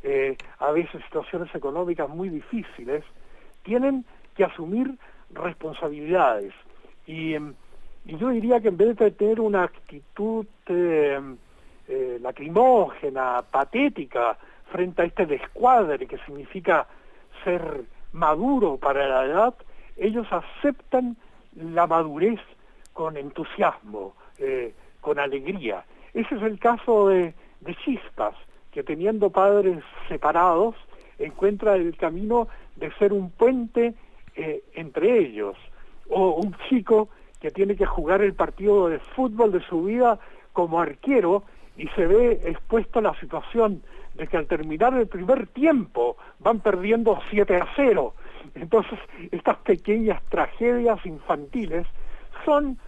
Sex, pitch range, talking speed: male, 175-240 Hz, 125 wpm